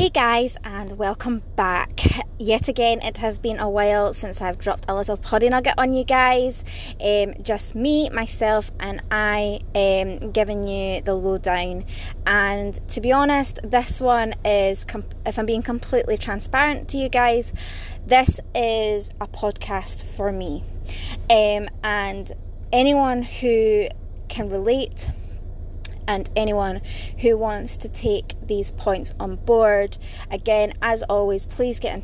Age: 20-39